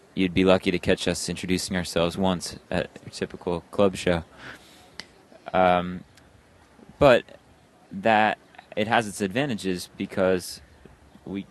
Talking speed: 120 wpm